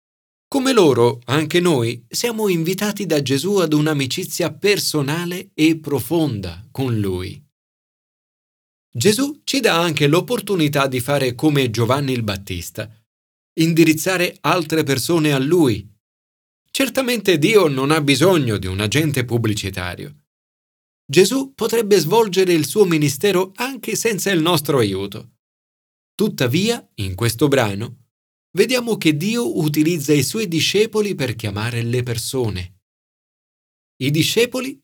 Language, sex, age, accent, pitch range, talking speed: Italian, male, 40-59, native, 120-190 Hz, 115 wpm